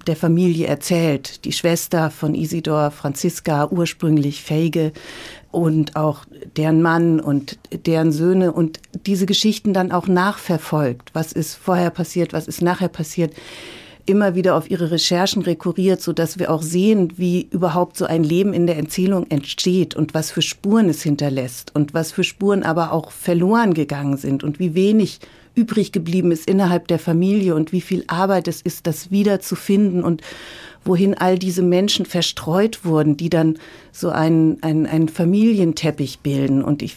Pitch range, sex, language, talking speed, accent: 160-185 Hz, female, German, 160 wpm, German